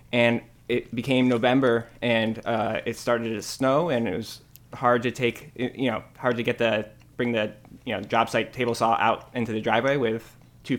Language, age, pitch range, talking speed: English, 20-39, 115-125 Hz, 200 wpm